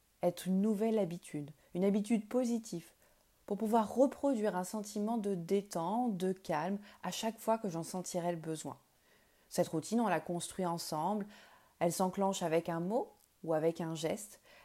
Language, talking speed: French, 160 wpm